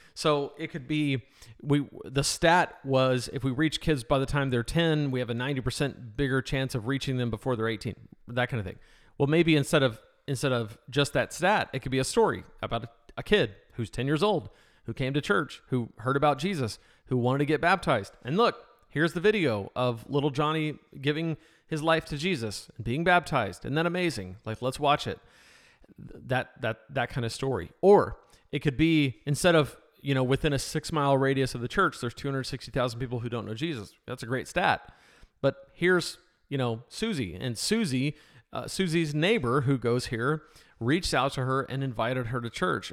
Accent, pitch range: American, 120-155 Hz